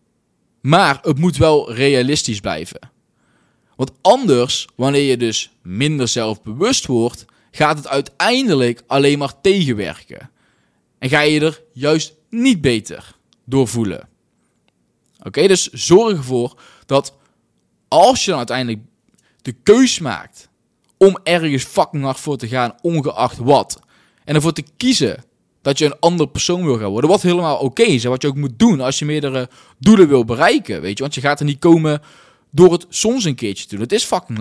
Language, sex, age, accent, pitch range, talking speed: Dutch, male, 20-39, Dutch, 120-165 Hz, 165 wpm